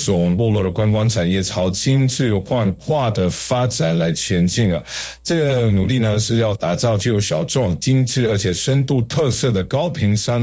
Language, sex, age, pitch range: Chinese, male, 50-69, 95-125 Hz